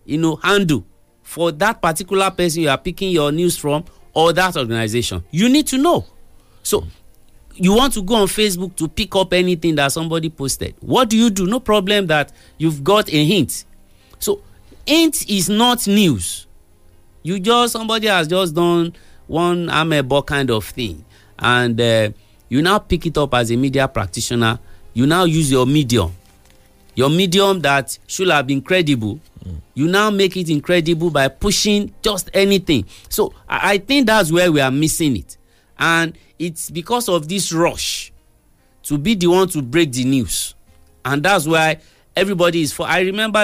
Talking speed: 175 wpm